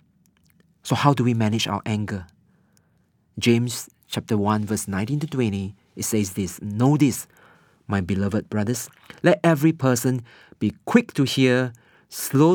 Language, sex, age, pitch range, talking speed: English, male, 40-59, 105-145 Hz, 145 wpm